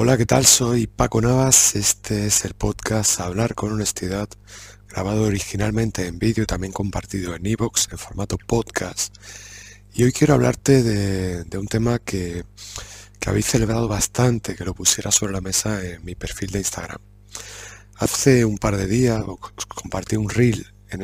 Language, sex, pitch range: Spanish, male, 100-110 Hz